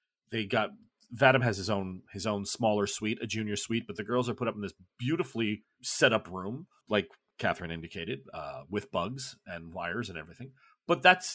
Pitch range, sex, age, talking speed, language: 115-155 Hz, male, 40-59, 195 wpm, English